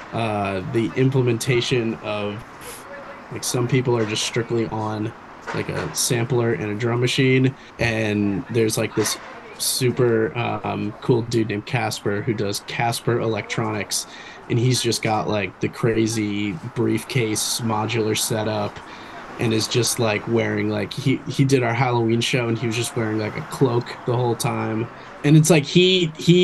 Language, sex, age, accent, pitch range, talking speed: English, male, 20-39, American, 110-130 Hz, 160 wpm